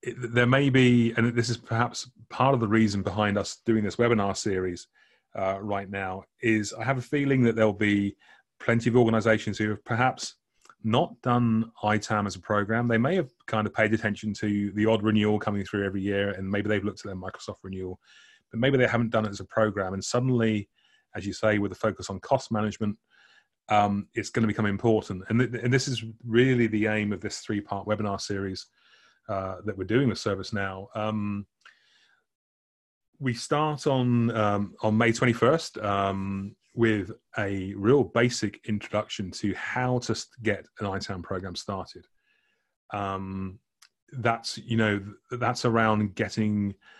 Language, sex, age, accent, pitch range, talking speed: English, male, 30-49, British, 100-120 Hz, 175 wpm